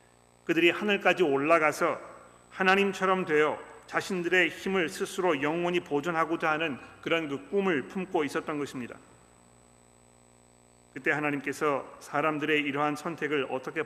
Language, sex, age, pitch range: Korean, male, 40-59, 115-165 Hz